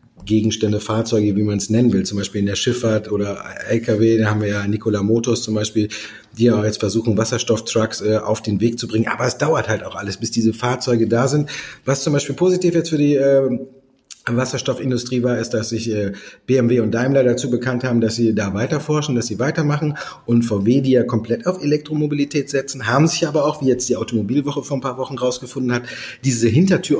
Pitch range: 110-135 Hz